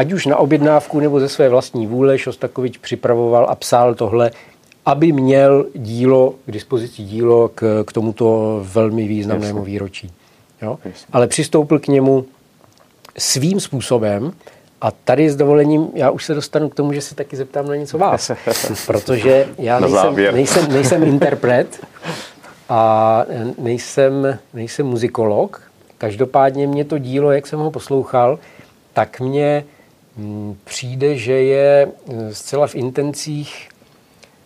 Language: Czech